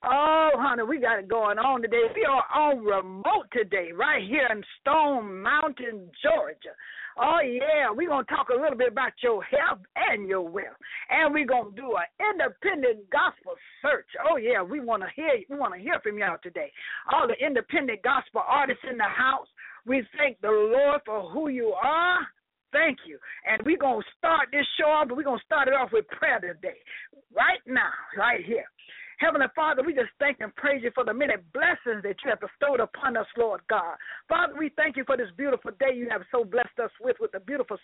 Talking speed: 210 wpm